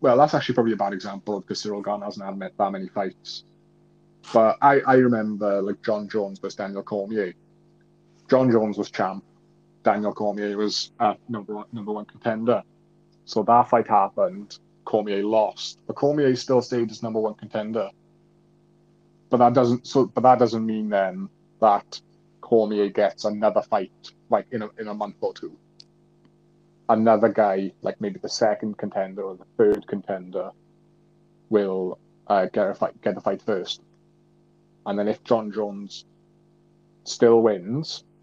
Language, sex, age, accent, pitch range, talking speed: English, male, 20-39, British, 100-140 Hz, 160 wpm